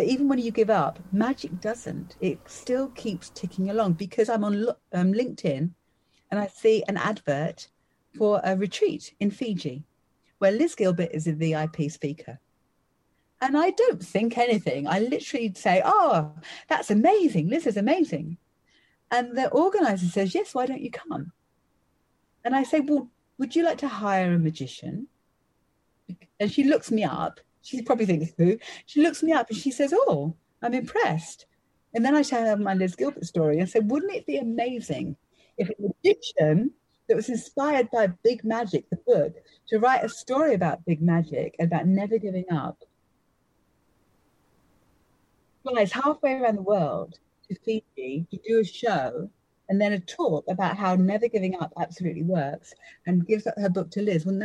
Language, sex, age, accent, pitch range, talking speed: English, female, 40-59, British, 170-245 Hz, 170 wpm